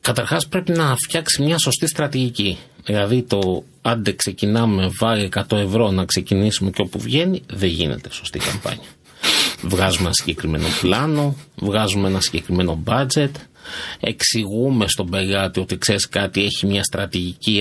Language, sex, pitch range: Greek, male, 100-155 Hz